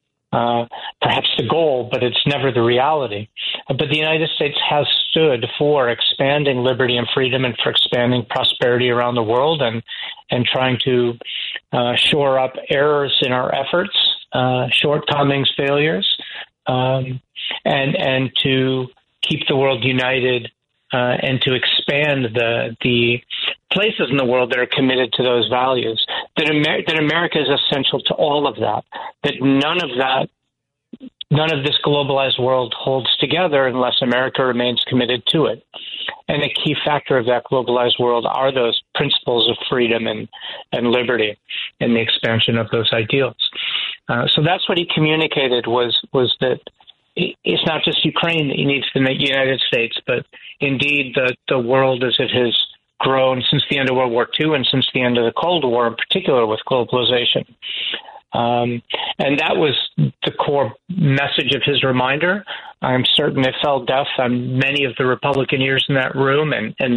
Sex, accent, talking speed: male, American, 170 wpm